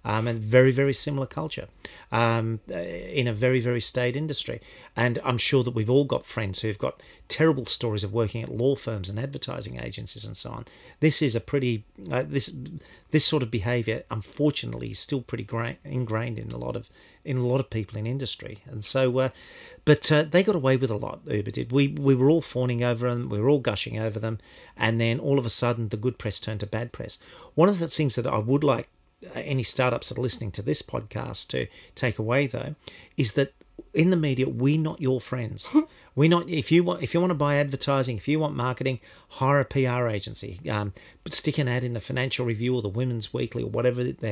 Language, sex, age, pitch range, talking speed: English, male, 40-59, 115-140 Hz, 225 wpm